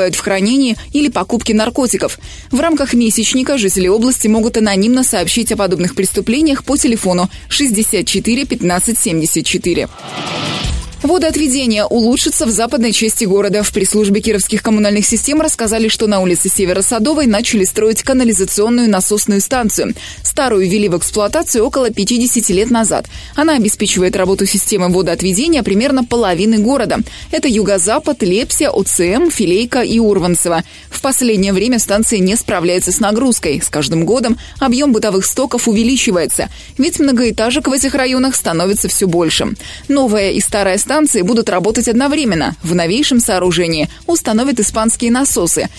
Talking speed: 130 wpm